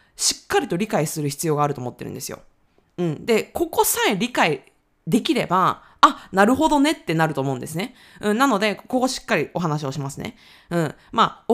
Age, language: 20-39, Japanese